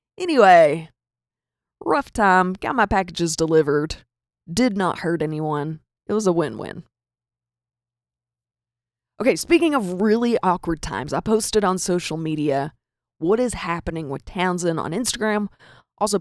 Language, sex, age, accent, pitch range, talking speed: English, female, 20-39, American, 140-200 Hz, 125 wpm